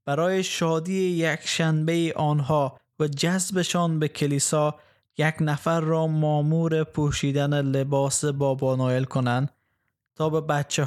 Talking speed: 110 wpm